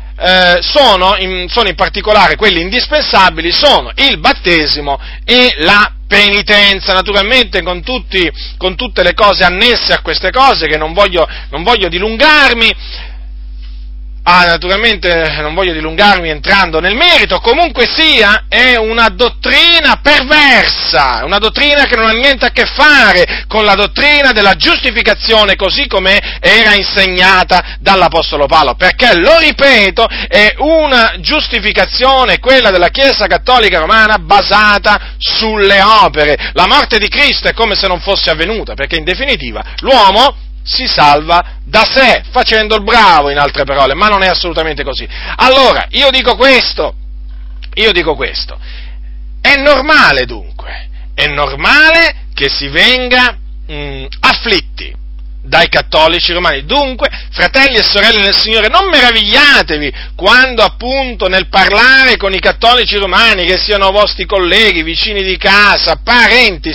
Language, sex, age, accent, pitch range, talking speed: Italian, male, 40-59, native, 175-250 Hz, 135 wpm